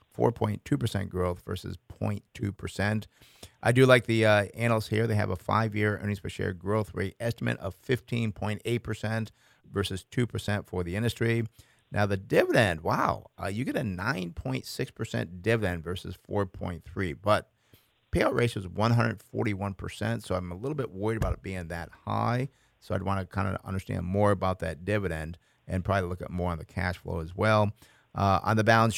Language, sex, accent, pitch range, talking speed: English, male, American, 90-110 Hz, 170 wpm